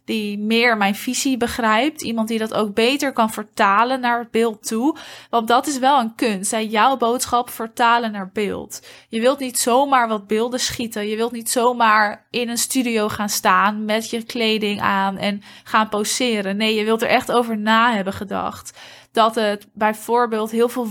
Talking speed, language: 185 wpm, Dutch